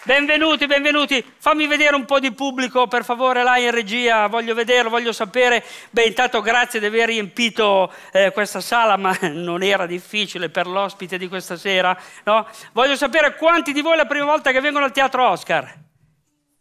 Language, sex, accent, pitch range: Italian, male, native, 185-255 Hz